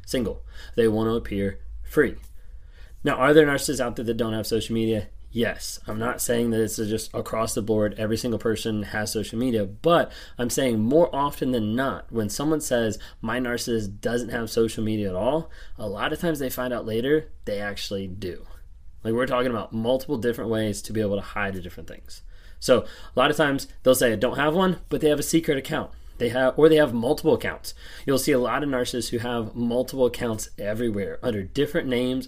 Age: 20-39